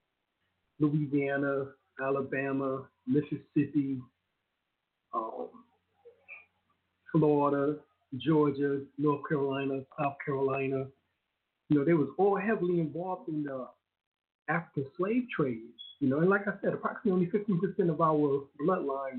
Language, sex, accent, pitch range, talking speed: English, male, American, 140-185 Hz, 105 wpm